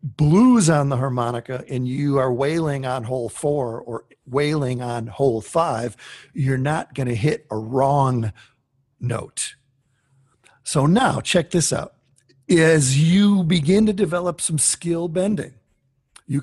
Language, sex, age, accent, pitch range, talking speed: English, male, 50-69, American, 130-160 Hz, 140 wpm